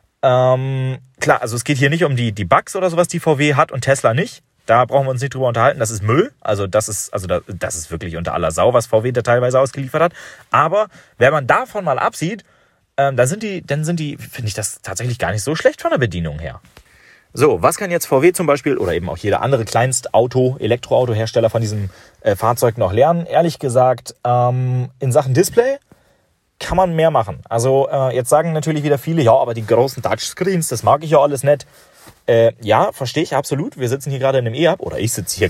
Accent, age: German, 30-49